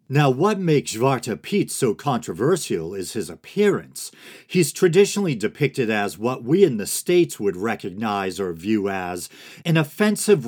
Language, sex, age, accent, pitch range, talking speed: English, male, 40-59, American, 115-170 Hz, 150 wpm